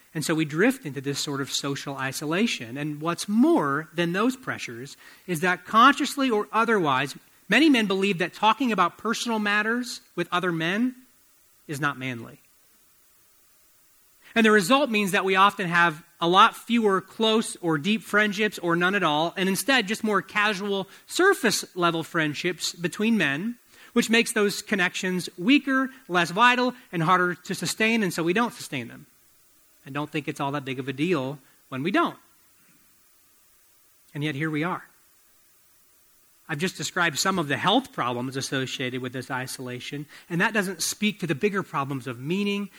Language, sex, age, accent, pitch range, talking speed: English, male, 30-49, American, 155-215 Hz, 170 wpm